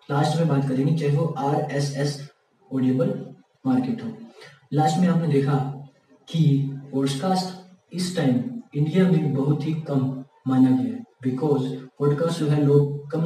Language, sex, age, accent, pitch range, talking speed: Hindi, male, 20-39, native, 135-155 Hz, 145 wpm